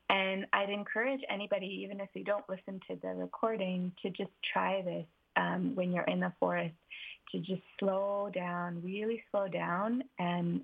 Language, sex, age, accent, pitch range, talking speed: English, female, 20-39, American, 170-210 Hz, 170 wpm